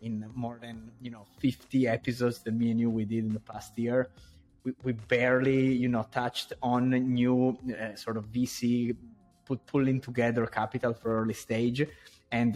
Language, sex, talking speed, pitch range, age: English, male, 180 wpm, 105-125 Hz, 20-39